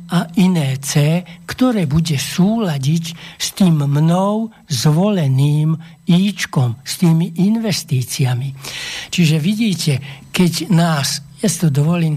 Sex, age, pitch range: male, 60-79, 145-180 Hz